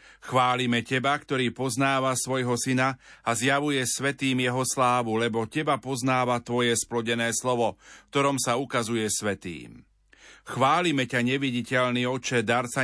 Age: 40-59